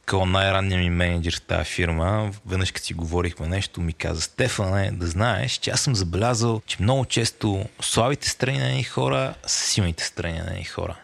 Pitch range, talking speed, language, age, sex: 90-115 Hz, 185 wpm, Bulgarian, 30-49, male